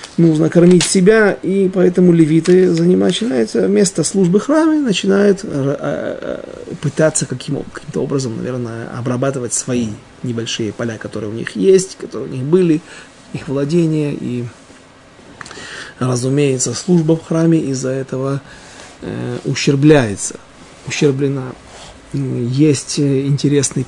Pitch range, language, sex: 130-175 Hz, Russian, male